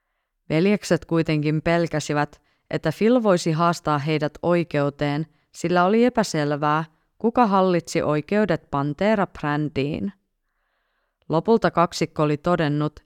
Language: Finnish